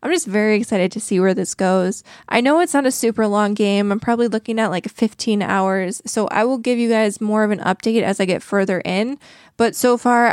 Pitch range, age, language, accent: 200-235 Hz, 20-39, English, American